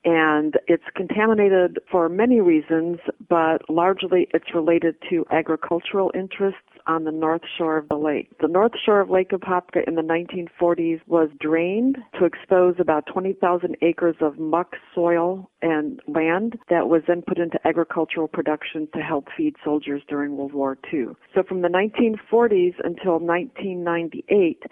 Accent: American